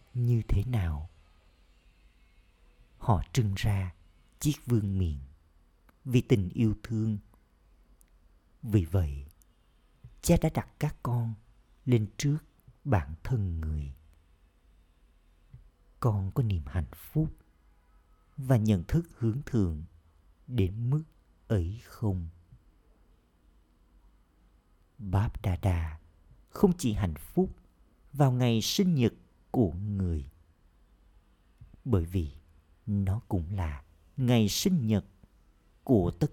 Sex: male